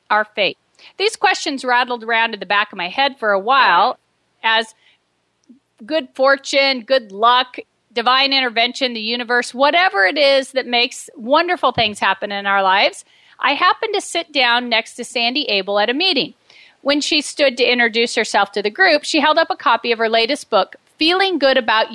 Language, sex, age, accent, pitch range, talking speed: English, female, 40-59, American, 230-300 Hz, 185 wpm